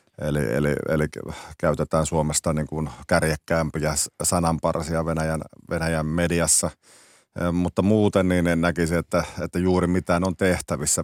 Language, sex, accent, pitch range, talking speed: Finnish, male, native, 75-85 Hz, 125 wpm